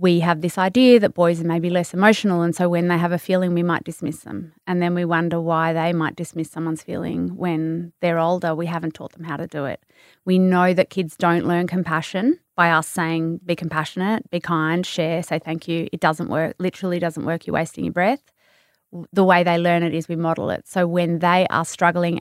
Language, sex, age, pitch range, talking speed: English, female, 20-39, 165-185 Hz, 225 wpm